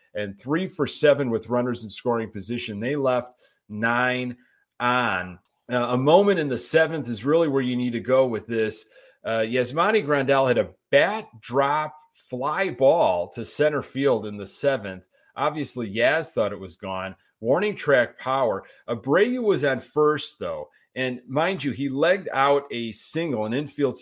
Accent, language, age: American, English, 30-49